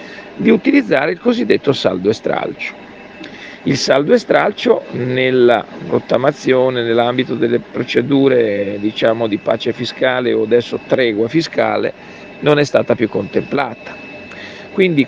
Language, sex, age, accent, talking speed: Italian, male, 50-69, native, 110 wpm